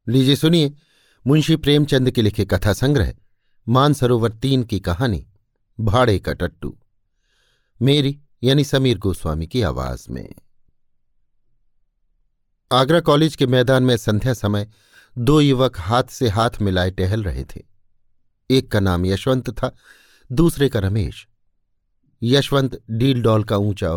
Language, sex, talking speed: Hindi, male, 125 wpm